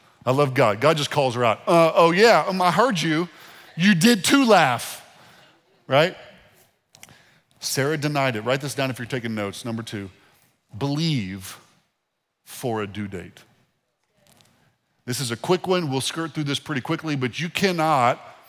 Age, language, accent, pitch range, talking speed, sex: 40-59, English, American, 120-160 Hz, 165 wpm, male